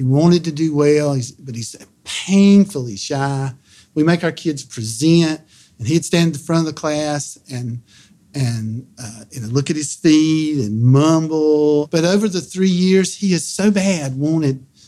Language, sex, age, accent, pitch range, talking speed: English, male, 50-69, American, 120-155 Hz, 170 wpm